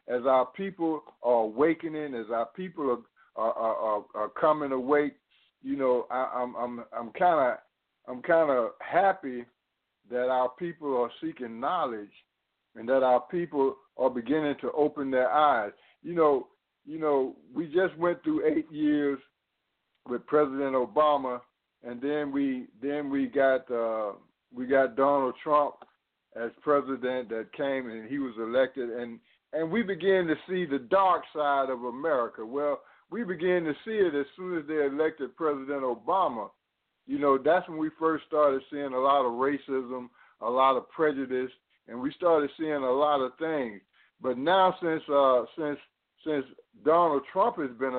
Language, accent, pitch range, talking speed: English, American, 125-155 Hz, 165 wpm